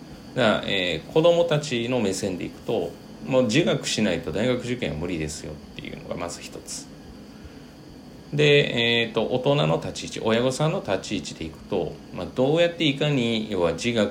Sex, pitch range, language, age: male, 85-125 Hz, Japanese, 40-59